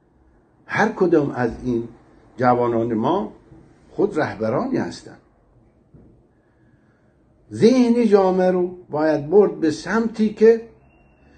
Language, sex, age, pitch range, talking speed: Persian, male, 60-79, 125-165 Hz, 90 wpm